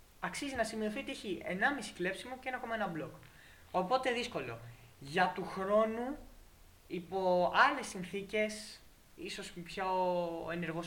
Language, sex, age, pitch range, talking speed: Greek, male, 20-39, 165-220 Hz, 115 wpm